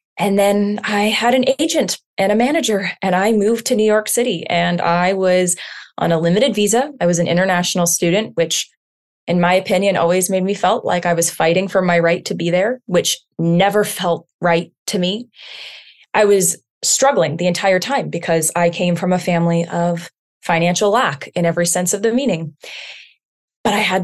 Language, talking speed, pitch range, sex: English, 190 wpm, 170-215 Hz, female